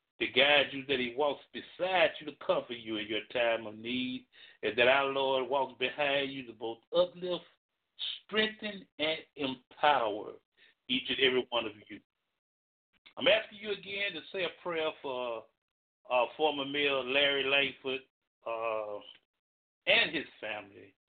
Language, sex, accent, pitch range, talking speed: English, male, American, 125-175 Hz, 155 wpm